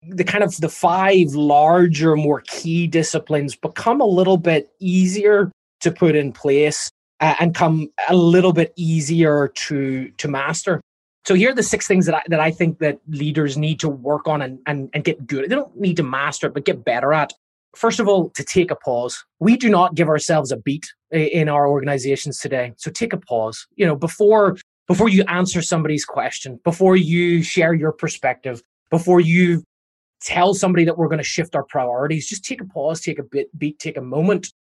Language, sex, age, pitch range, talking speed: English, male, 20-39, 140-175 Hz, 200 wpm